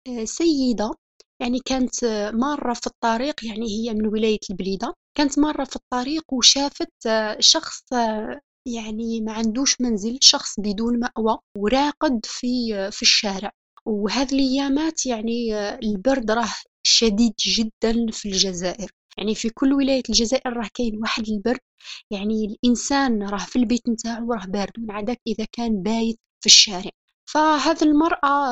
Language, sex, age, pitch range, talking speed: Arabic, female, 20-39, 220-265 Hz, 130 wpm